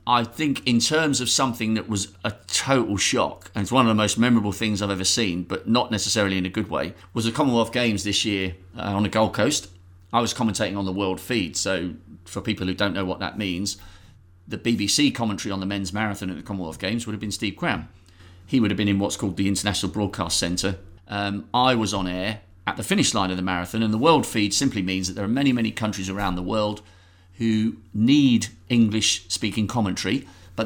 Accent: British